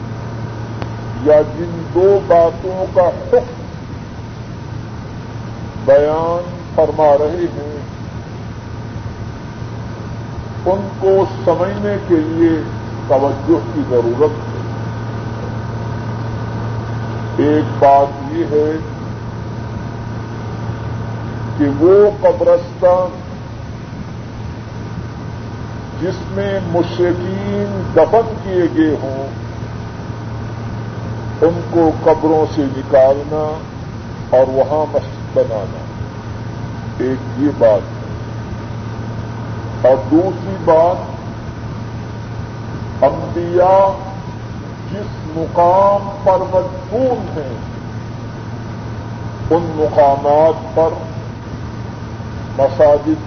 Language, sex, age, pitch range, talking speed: Urdu, female, 50-69, 115-150 Hz, 65 wpm